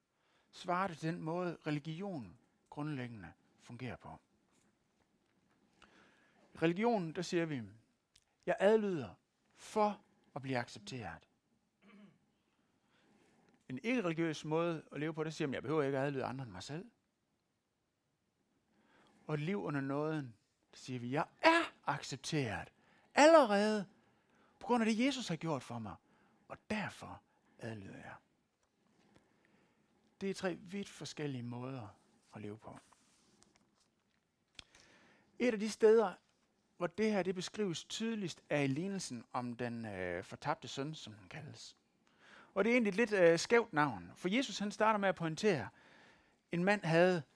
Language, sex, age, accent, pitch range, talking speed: Danish, male, 60-79, native, 140-205 Hz, 140 wpm